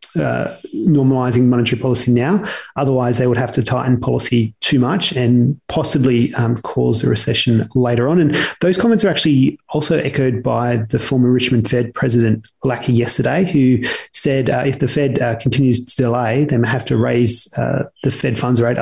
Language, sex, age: English, male, 30-49